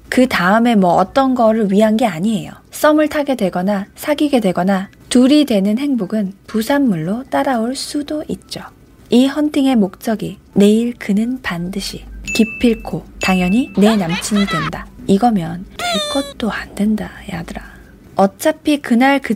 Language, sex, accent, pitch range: Korean, female, native, 195-255 Hz